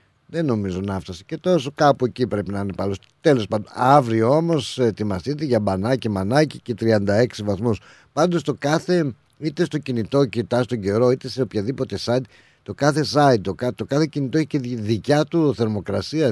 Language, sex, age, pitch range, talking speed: Greek, male, 50-69, 110-145 Hz, 180 wpm